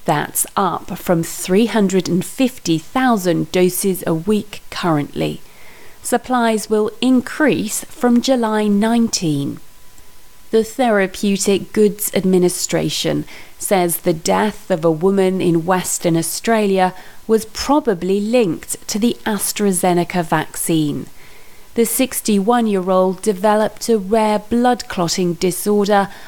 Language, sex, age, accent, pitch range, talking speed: English, female, 30-49, British, 180-225 Hz, 95 wpm